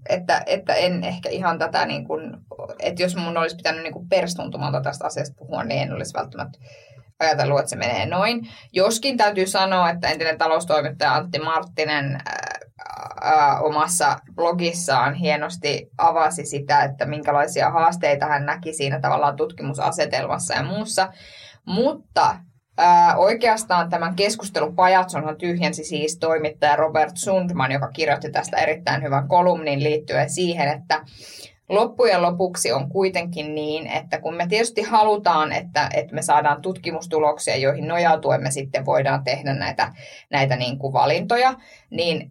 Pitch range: 145-185 Hz